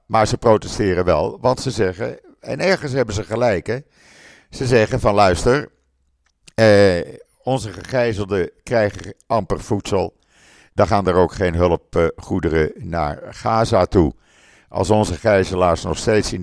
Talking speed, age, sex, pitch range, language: 140 wpm, 50-69, male, 90-115 Hz, Dutch